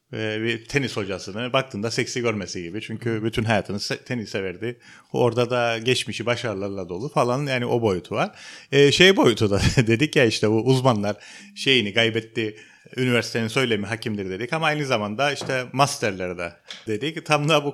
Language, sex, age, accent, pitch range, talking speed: Turkish, male, 40-59, native, 110-150 Hz, 160 wpm